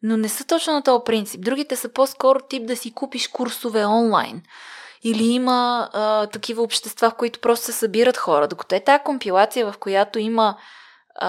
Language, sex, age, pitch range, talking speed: Bulgarian, female, 20-39, 195-240 Hz, 180 wpm